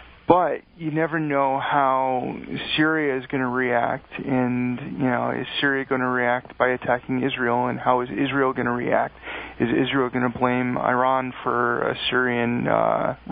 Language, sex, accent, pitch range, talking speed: English, male, American, 120-140 Hz, 170 wpm